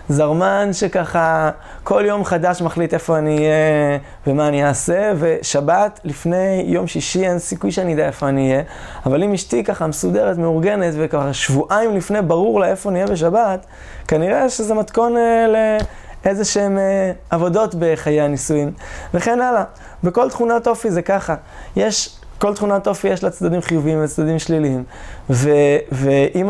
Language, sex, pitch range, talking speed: Hebrew, male, 145-195 Hz, 150 wpm